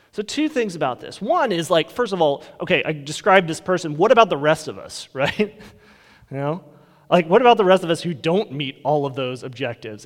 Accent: American